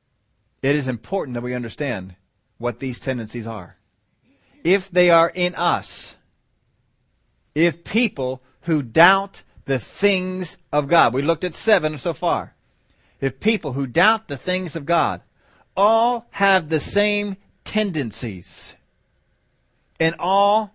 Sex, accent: male, American